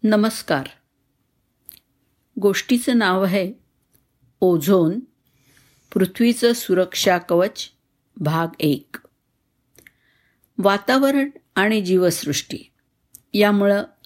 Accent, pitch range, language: native, 150-210 Hz, Marathi